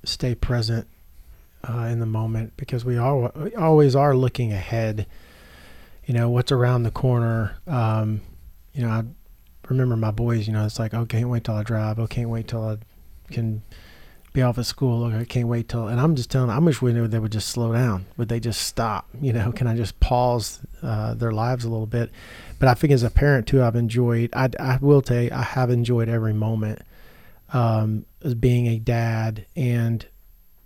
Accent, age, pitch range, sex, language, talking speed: American, 40-59, 110-130 Hz, male, English, 210 wpm